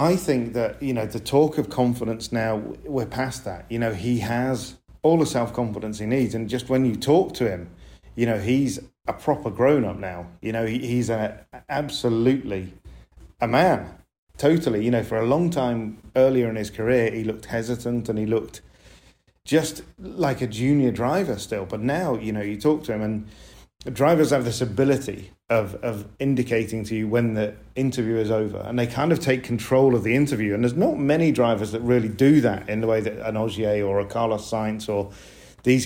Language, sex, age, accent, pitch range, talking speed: English, male, 40-59, British, 110-130 Hz, 195 wpm